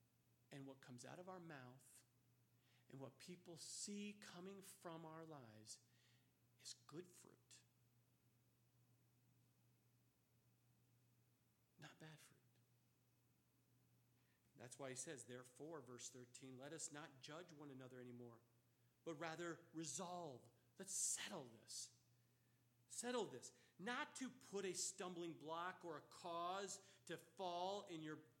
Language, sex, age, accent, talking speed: English, male, 40-59, American, 120 wpm